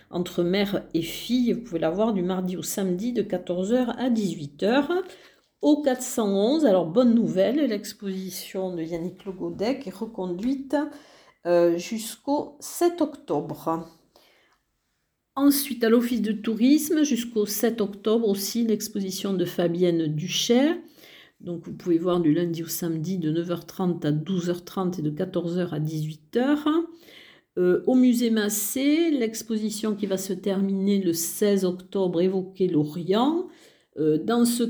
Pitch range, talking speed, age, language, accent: 180-240 Hz, 135 wpm, 50-69, French, French